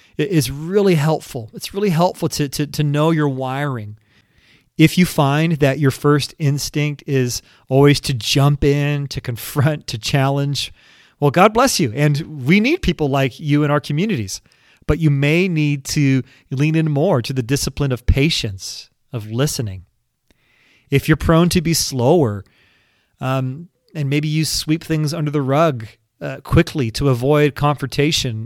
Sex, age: male, 30-49